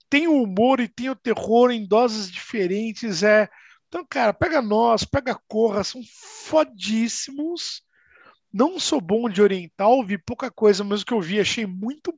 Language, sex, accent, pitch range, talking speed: Portuguese, male, Brazilian, 185-255 Hz, 170 wpm